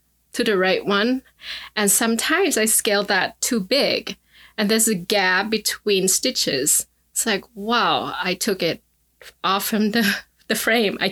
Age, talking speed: 20-39, 155 wpm